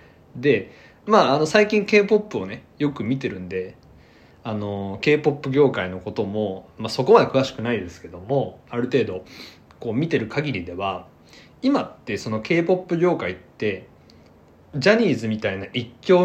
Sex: male